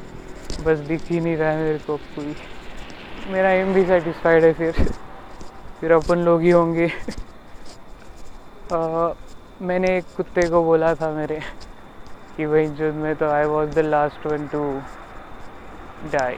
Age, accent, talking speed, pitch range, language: 20-39, native, 115 wpm, 150-170 Hz, Marathi